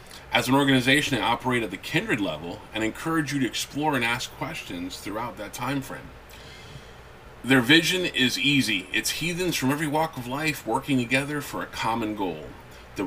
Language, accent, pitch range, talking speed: English, American, 110-140 Hz, 180 wpm